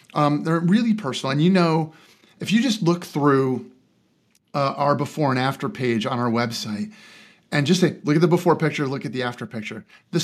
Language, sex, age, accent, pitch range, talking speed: English, male, 30-49, American, 130-175 Hz, 205 wpm